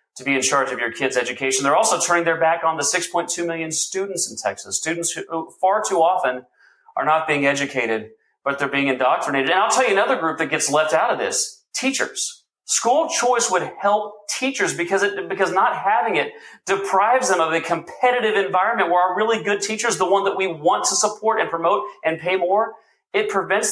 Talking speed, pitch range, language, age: 205 wpm, 155-205 Hz, English, 40-59